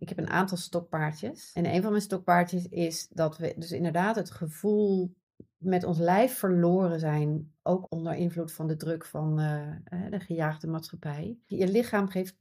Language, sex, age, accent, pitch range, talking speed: Dutch, female, 40-59, Dutch, 165-205 Hz, 170 wpm